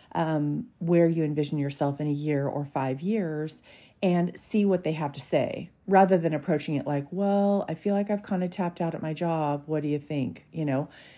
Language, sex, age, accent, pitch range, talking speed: English, female, 40-59, American, 145-180 Hz, 220 wpm